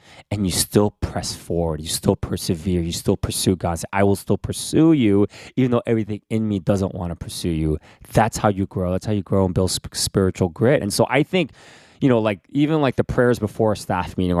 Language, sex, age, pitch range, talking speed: English, male, 20-39, 90-110 Hz, 225 wpm